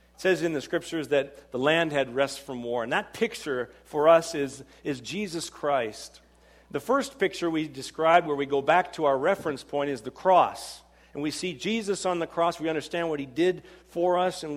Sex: male